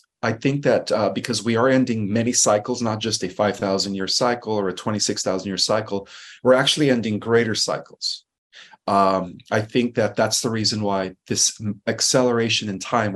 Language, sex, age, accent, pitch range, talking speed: English, male, 30-49, American, 100-120 Hz, 175 wpm